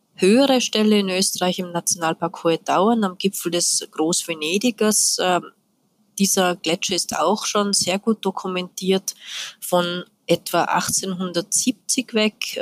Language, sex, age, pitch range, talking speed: German, female, 20-39, 170-205 Hz, 115 wpm